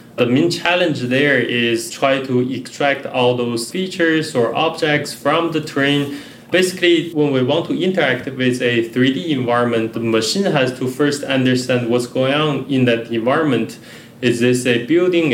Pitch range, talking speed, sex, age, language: 120-145 Hz, 165 wpm, male, 20-39, English